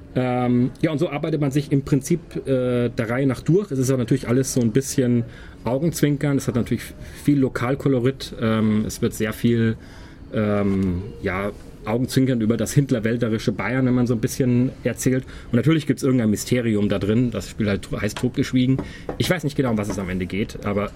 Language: German